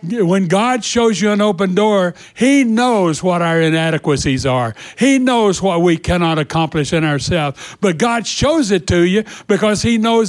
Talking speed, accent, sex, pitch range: 175 wpm, American, male, 185-230 Hz